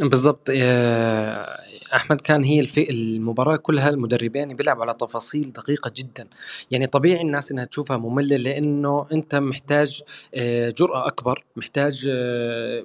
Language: Arabic